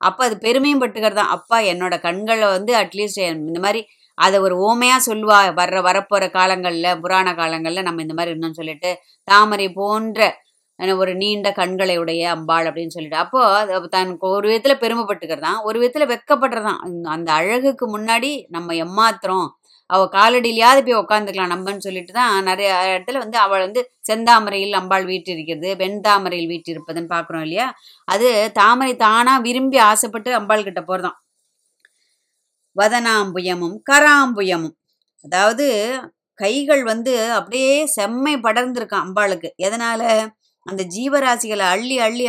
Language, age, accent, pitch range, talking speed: Tamil, 20-39, native, 185-235 Hz, 130 wpm